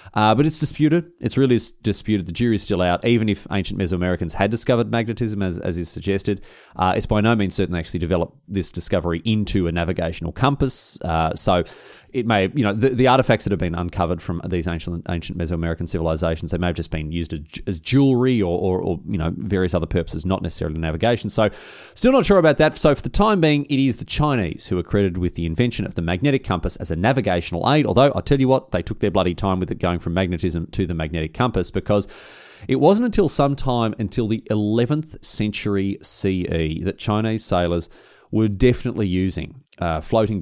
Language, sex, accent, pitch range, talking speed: English, male, Australian, 90-120 Hz, 210 wpm